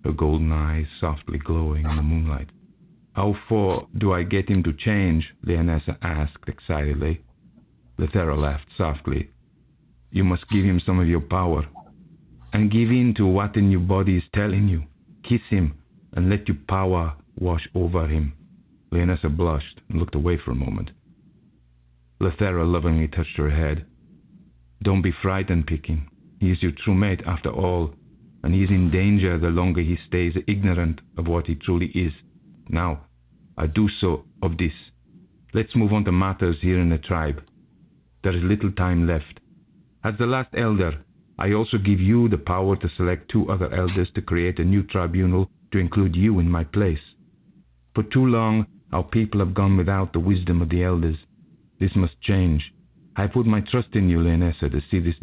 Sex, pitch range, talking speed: male, 80-95 Hz, 175 wpm